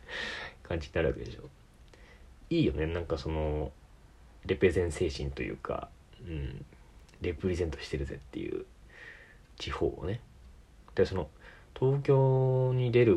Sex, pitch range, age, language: male, 80-115 Hz, 40-59, Japanese